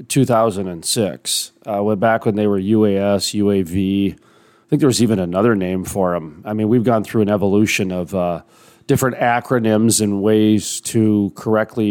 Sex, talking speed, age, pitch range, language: male, 160 wpm, 40-59, 110-125 Hz, English